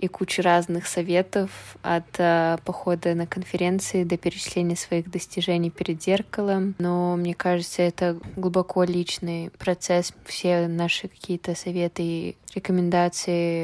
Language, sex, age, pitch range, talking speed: Russian, female, 20-39, 165-180 Hz, 125 wpm